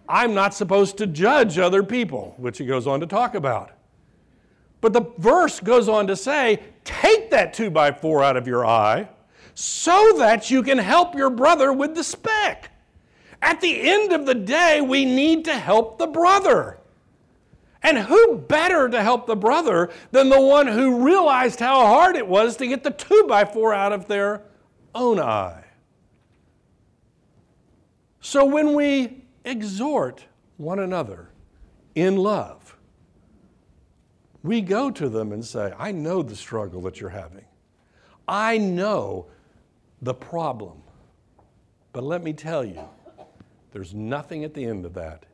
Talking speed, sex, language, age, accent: 155 wpm, male, English, 60-79, American